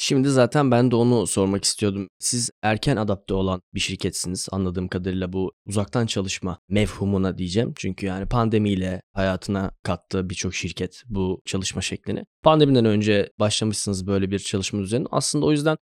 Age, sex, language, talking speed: 10-29, male, Turkish, 150 wpm